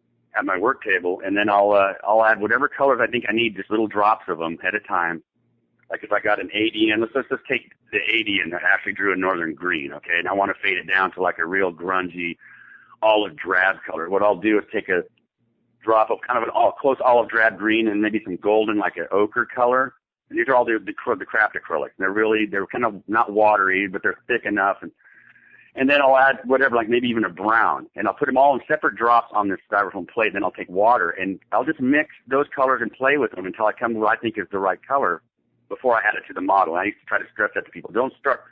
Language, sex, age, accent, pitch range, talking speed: English, male, 50-69, American, 100-130 Hz, 270 wpm